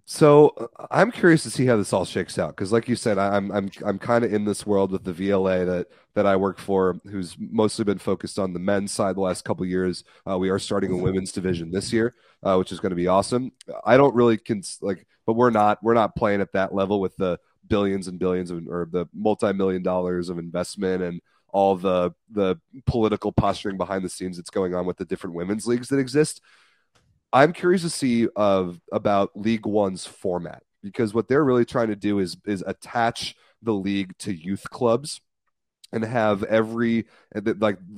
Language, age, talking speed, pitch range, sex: English, 30-49, 210 wpm, 95-110 Hz, male